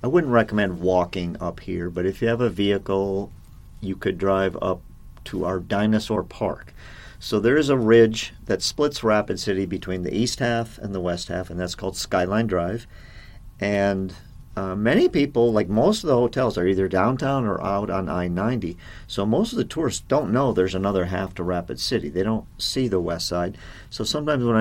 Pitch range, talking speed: 90-115 Hz, 195 wpm